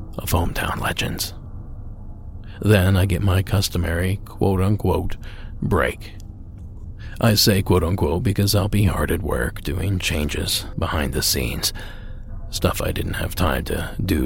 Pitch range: 90-105 Hz